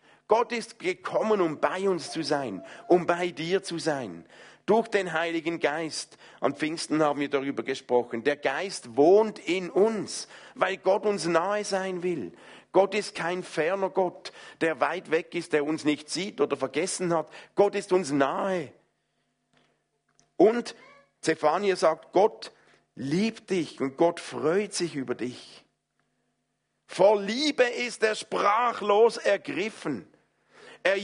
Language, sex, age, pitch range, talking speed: German, male, 50-69, 145-200 Hz, 140 wpm